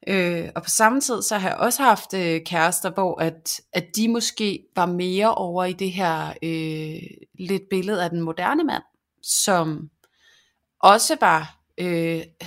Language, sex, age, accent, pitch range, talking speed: Danish, female, 30-49, native, 170-210 Hz, 165 wpm